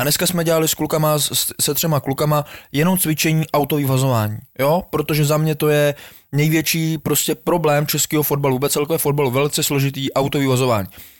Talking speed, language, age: 150 wpm, Czech, 20-39